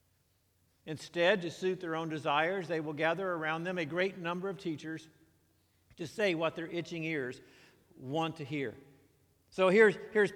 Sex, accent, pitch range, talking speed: male, American, 155-200 Hz, 160 wpm